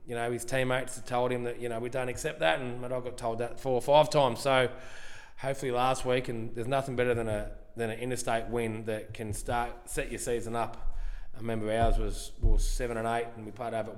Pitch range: 115-135 Hz